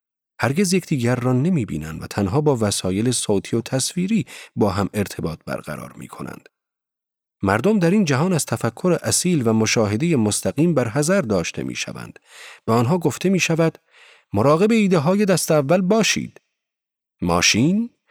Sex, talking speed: male, 145 wpm